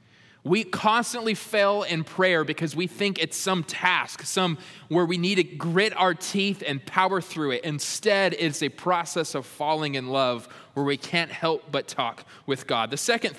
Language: English